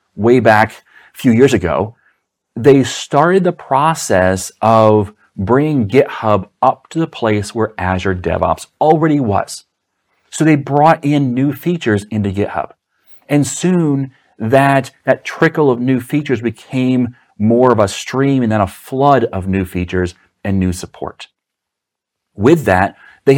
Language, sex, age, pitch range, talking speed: English, male, 40-59, 105-135 Hz, 145 wpm